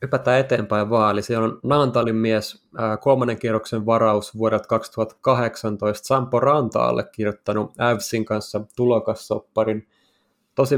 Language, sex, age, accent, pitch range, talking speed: Finnish, male, 20-39, native, 110-120 Hz, 105 wpm